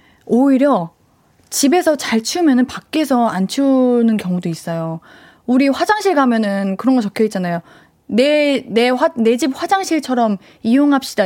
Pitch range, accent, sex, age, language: 210-295 Hz, native, female, 20-39, Korean